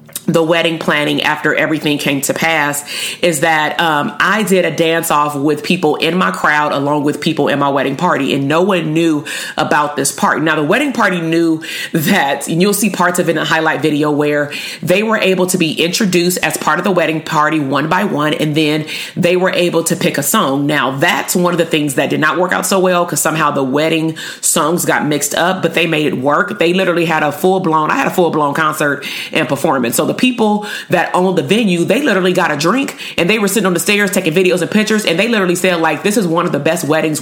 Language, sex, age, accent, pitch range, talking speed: English, female, 30-49, American, 150-180 Hz, 240 wpm